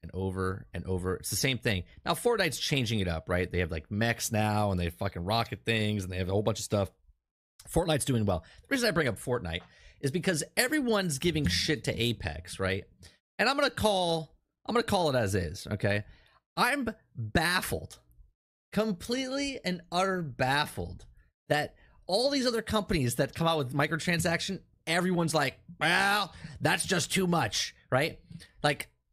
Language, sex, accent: English, male, American